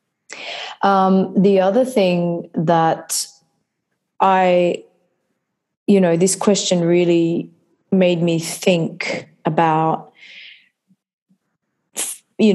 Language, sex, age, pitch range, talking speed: English, female, 20-39, 165-190 Hz, 75 wpm